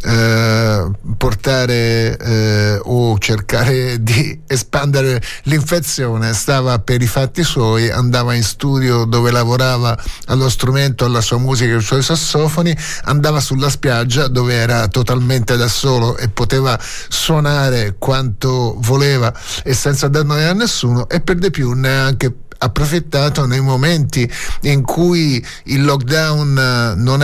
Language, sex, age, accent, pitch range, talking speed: Italian, male, 30-49, native, 120-140 Hz, 125 wpm